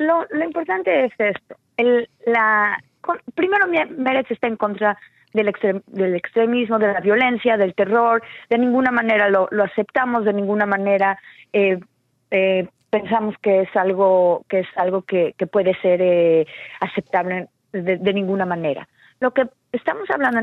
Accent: Mexican